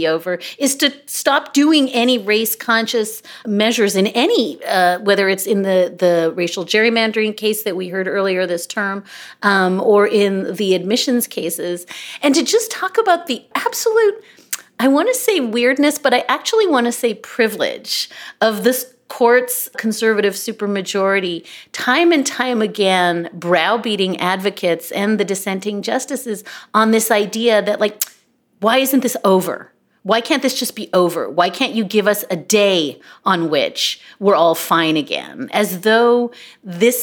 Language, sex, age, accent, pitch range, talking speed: English, female, 30-49, American, 185-245 Hz, 155 wpm